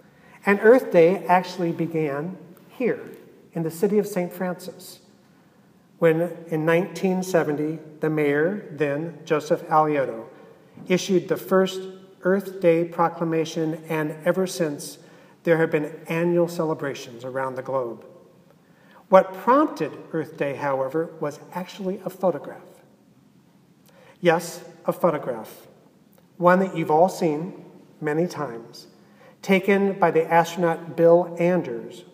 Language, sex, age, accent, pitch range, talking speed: English, male, 50-69, American, 155-180 Hz, 115 wpm